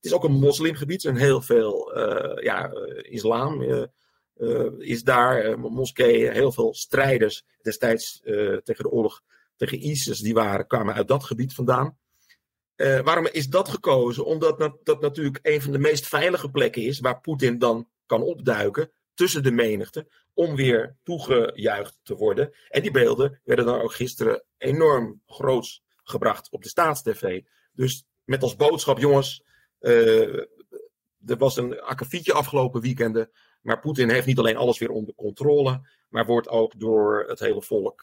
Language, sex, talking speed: Dutch, male, 165 wpm